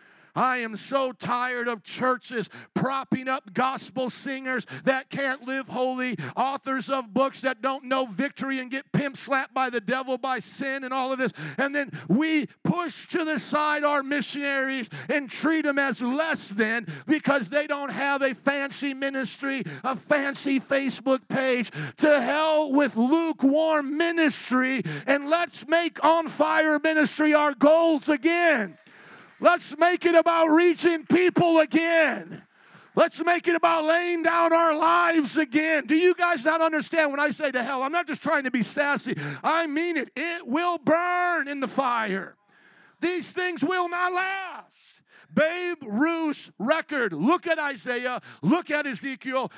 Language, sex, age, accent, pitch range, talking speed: English, male, 50-69, American, 255-315 Hz, 155 wpm